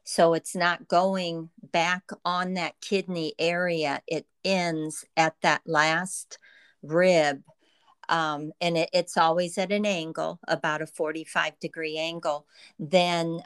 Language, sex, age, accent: English, female, 50-69, American